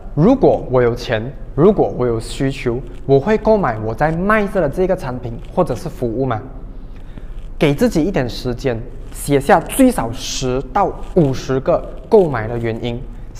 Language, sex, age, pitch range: Chinese, male, 20-39, 120-170 Hz